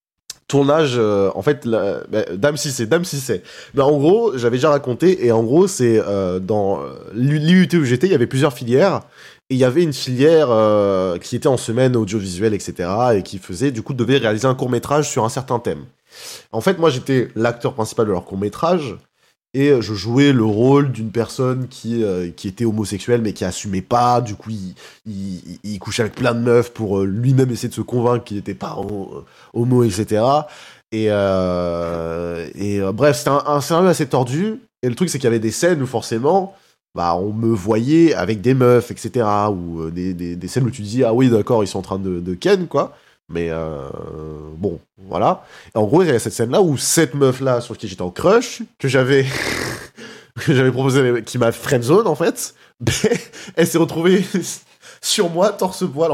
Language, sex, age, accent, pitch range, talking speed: French, male, 20-39, French, 100-140 Hz, 205 wpm